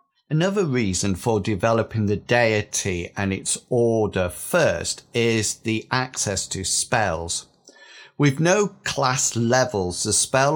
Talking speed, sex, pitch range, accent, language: 120 wpm, male, 105-135 Hz, British, English